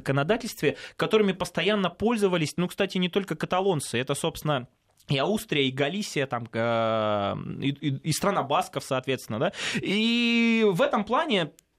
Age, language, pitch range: 20-39, Russian, 140-190 Hz